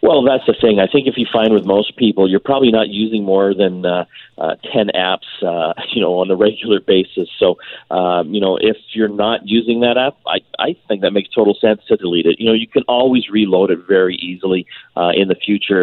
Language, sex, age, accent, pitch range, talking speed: English, male, 40-59, American, 90-110 Hz, 235 wpm